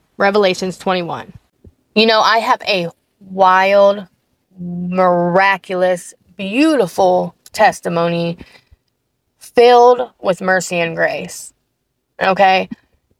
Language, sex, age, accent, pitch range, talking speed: English, female, 20-39, American, 170-210 Hz, 75 wpm